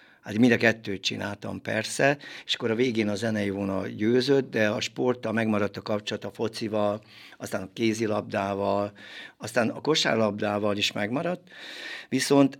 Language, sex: Hungarian, male